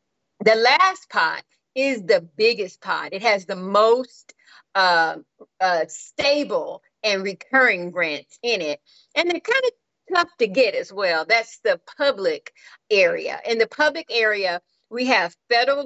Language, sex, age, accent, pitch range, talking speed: English, female, 40-59, American, 210-280 Hz, 150 wpm